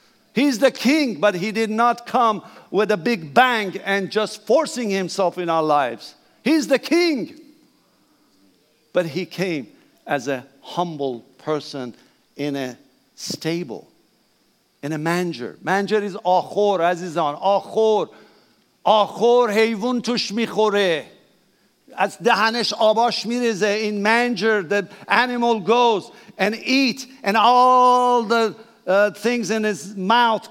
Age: 50-69